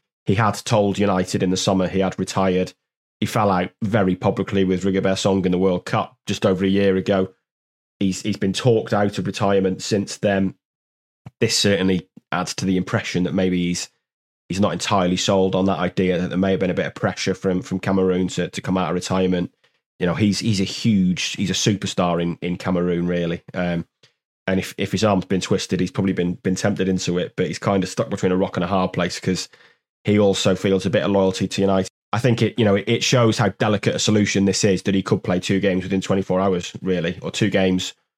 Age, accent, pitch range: 20-39, British, 90-100 Hz